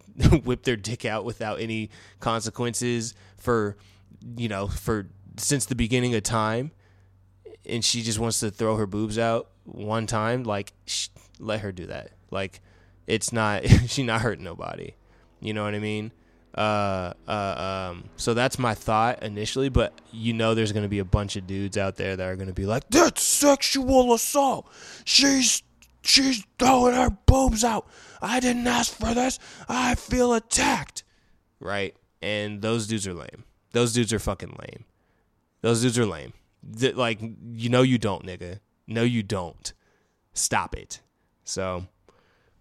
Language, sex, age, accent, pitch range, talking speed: English, male, 20-39, American, 100-125 Hz, 160 wpm